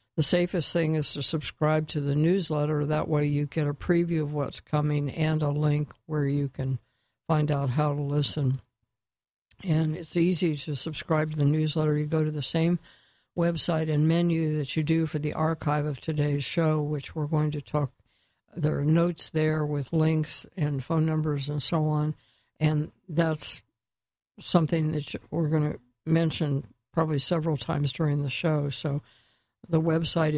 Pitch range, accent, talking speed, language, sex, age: 145-160 Hz, American, 175 wpm, English, female, 60-79